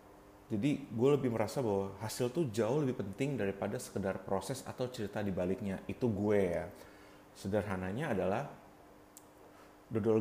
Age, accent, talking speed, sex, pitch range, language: 30-49, native, 130 wpm, male, 95-120 Hz, Indonesian